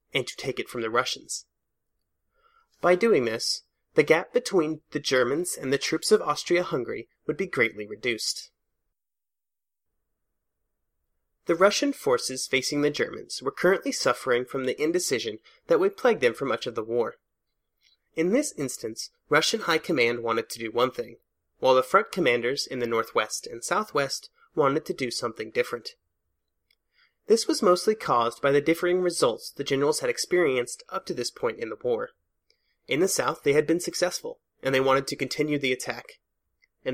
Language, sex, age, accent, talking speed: English, male, 30-49, American, 170 wpm